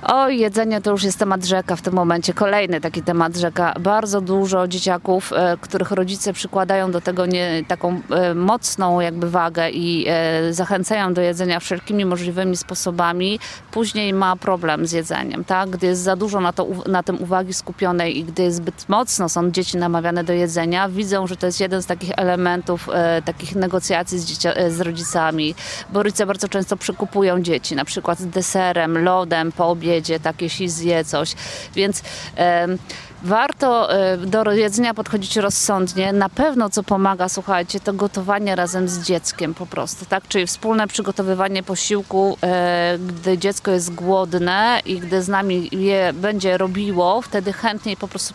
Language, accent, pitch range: Polish, native, 175-200 Hz